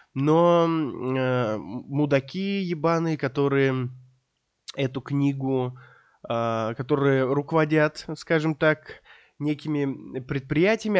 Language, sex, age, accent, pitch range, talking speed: Russian, male, 20-39, native, 125-175 Hz, 75 wpm